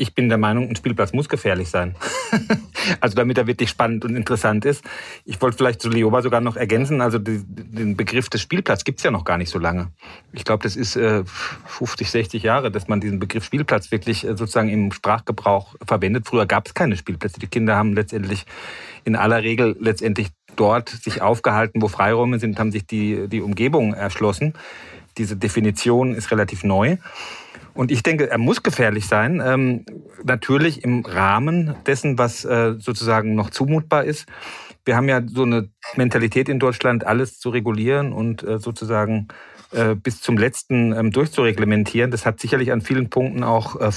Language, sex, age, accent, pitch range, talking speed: German, male, 40-59, German, 105-125 Hz, 180 wpm